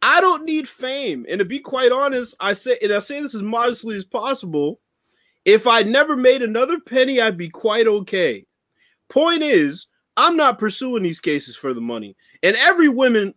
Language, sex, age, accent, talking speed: English, male, 20-39, American, 190 wpm